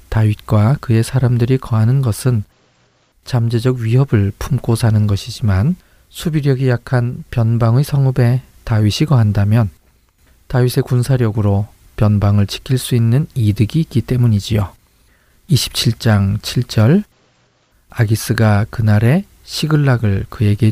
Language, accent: Korean, native